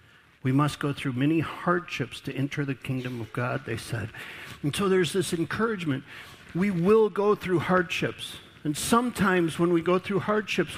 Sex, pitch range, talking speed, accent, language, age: male, 145-185 Hz, 175 wpm, American, English, 50-69